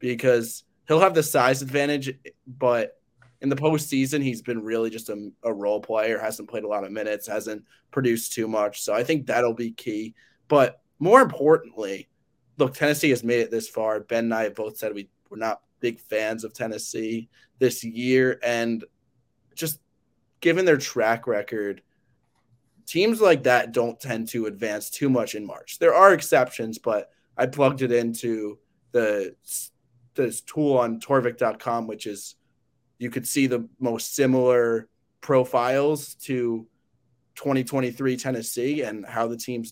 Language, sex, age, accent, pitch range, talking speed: English, male, 20-39, American, 115-135 Hz, 160 wpm